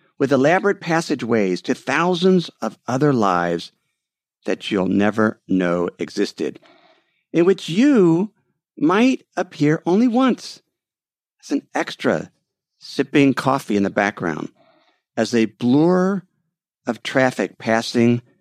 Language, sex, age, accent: English, male, 50-69, American